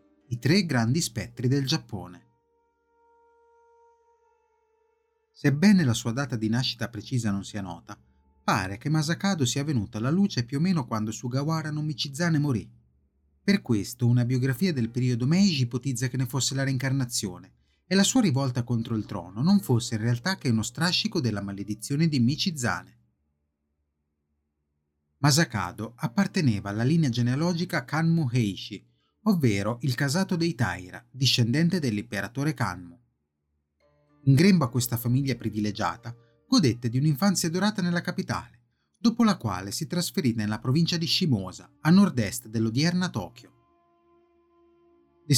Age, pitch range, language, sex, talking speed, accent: 30-49, 105-175 Hz, Italian, male, 135 wpm, native